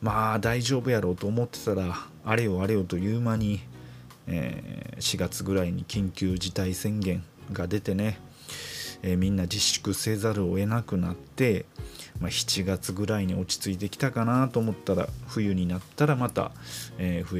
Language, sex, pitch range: Japanese, male, 90-110 Hz